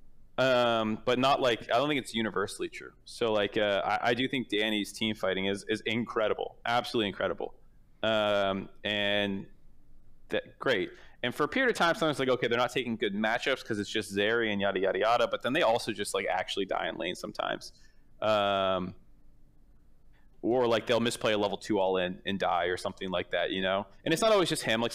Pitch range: 100-130 Hz